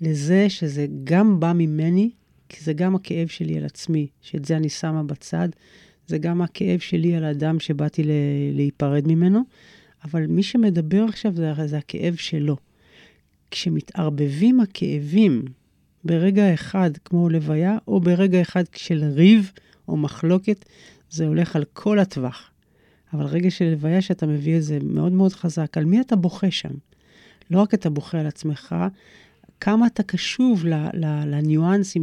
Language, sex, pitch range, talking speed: Hebrew, female, 155-190 Hz, 145 wpm